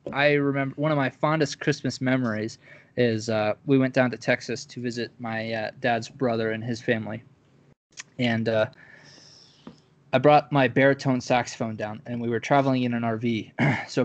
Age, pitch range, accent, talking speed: 20-39, 120-145 Hz, American, 170 wpm